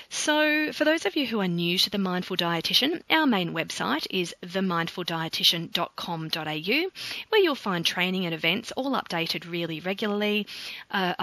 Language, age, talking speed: English, 30-49, 150 wpm